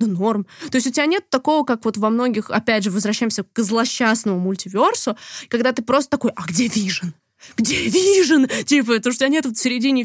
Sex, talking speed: female, 205 wpm